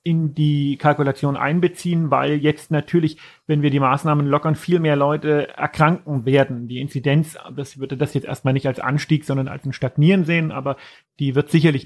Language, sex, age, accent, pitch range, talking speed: German, male, 40-59, German, 140-170 Hz, 180 wpm